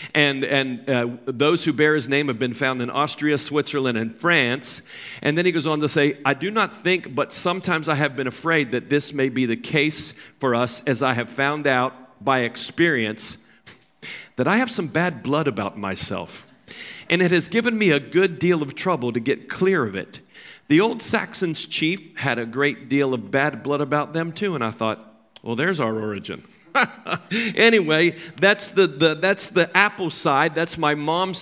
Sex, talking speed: male, 195 wpm